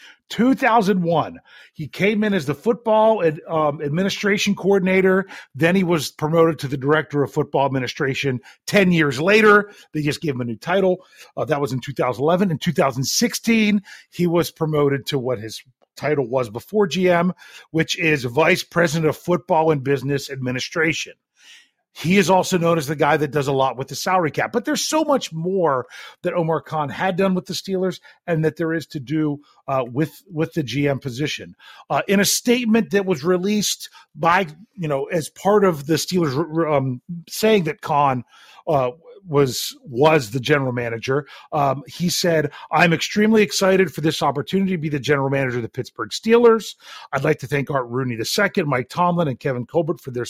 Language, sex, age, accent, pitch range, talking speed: English, male, 40-59, American, 140-185 Hz, 185 wpm